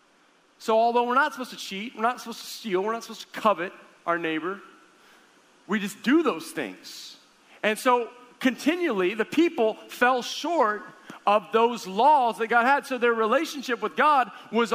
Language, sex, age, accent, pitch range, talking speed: English, male, 40-59, American, 170-245 Hz, 175 wpm